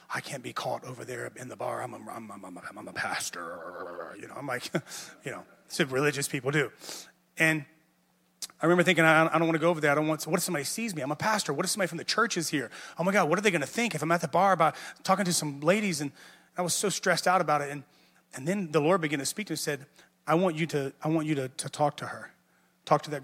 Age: 30-49